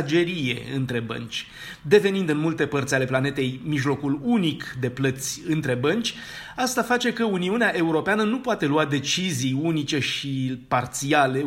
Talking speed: 135 wpm